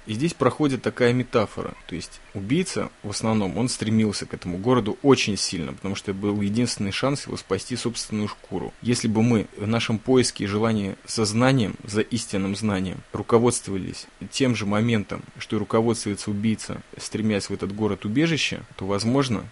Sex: male